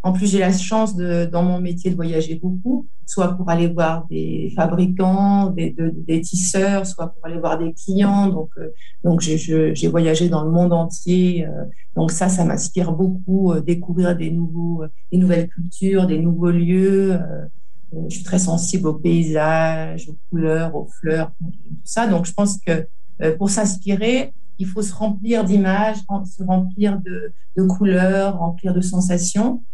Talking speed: 170 wpm